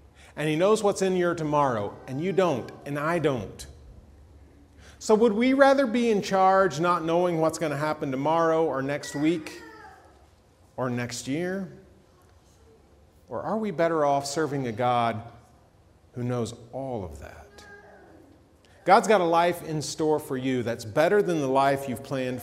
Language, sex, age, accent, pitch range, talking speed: English, male, 40-59, American, 115-175 Hz, 165 wpm